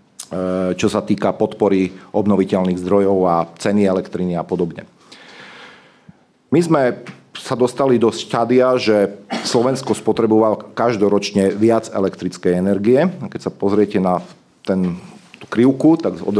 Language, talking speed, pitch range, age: Slovak, 120 wpm, 95-110 Hz, 40-59